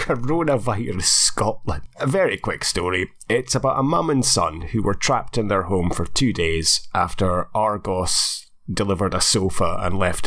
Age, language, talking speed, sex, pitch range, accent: 30-49, English, 165 wpm, male, 95-140 Hz, British